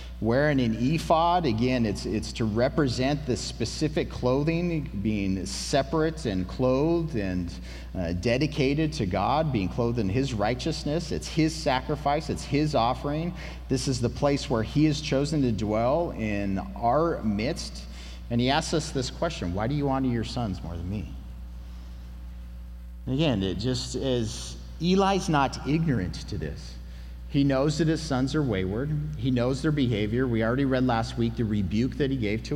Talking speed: 170 wpm